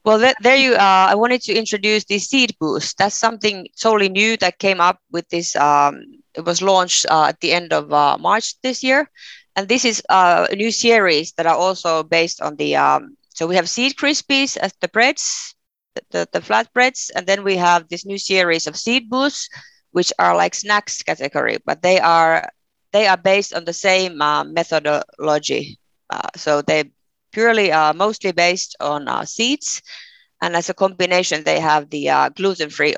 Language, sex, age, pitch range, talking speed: English, female, 30-49, 165-225 Hz, 190 wpm